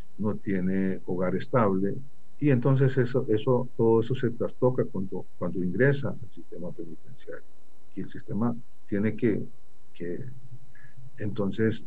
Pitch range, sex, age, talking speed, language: 95-120 Hz, male, 50-69, 125 wpm, Spanish